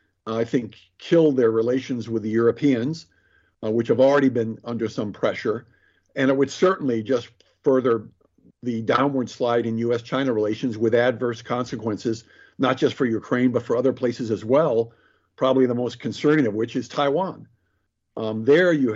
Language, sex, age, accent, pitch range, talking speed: English, male, 50-69, American, 115-130 Hz, 165 wpm